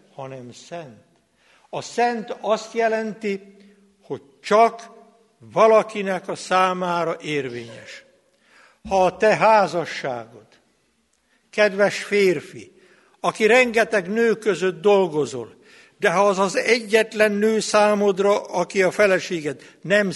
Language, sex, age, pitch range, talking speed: Hungarian, male, 60-79, 180-225 Hz, 100 wpm